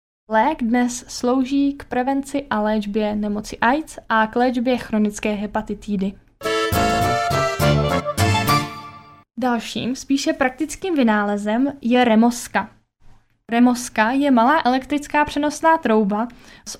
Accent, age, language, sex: native, 10-29, Czech, female